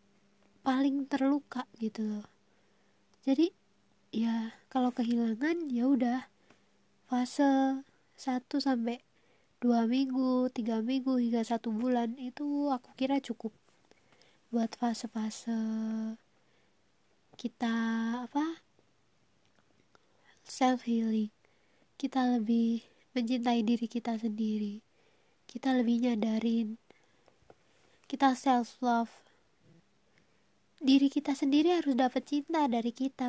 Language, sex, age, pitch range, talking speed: Indonesian, female, 20-39, 230-265 Hz, 90 wpm